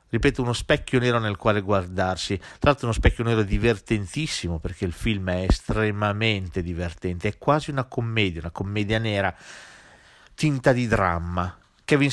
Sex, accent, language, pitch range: male, native, Italian, 95-120 Hz